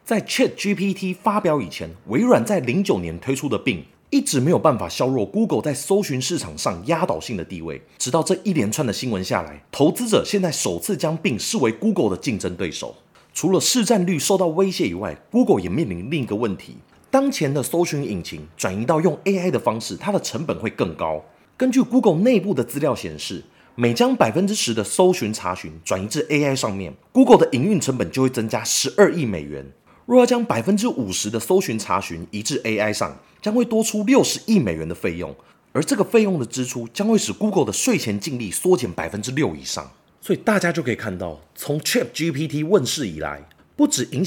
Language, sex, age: Chinese, male, 30-49